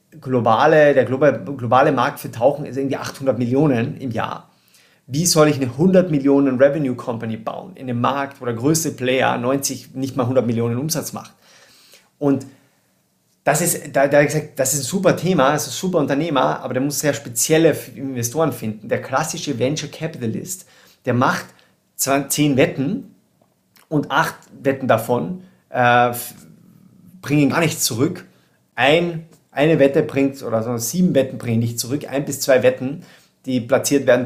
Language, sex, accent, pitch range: German, male, German, 120-145 Hz